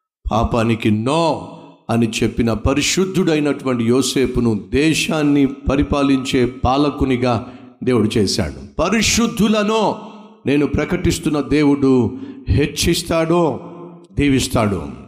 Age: 50-69